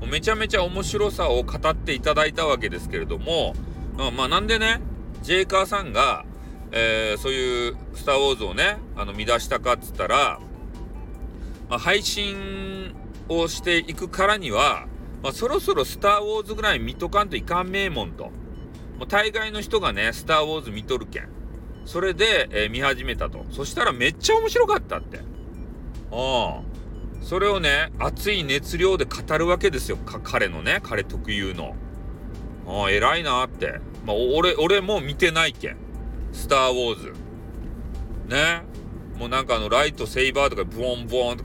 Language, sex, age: Japanese, male, 40-59